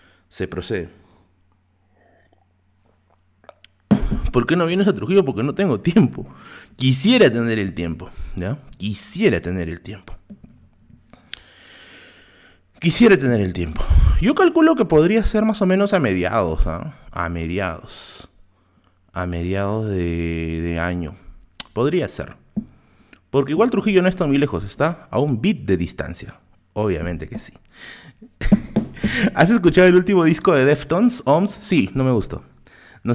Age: 30-49